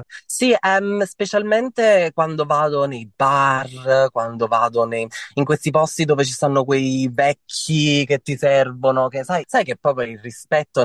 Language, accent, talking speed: Italian, native, 155 wpm